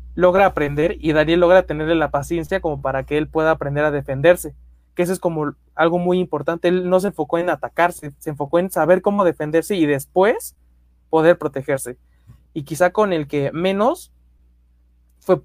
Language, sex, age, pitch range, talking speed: Spanish, male, 20-39, 135-170 Hz, 180 wpm